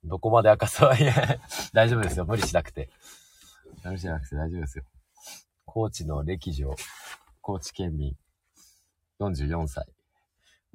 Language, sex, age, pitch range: Japanese, male, 40-59, 75-95 Hz